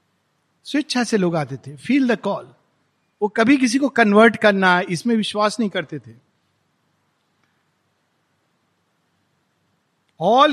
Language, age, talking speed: Hindi, 50-69, 115 wpm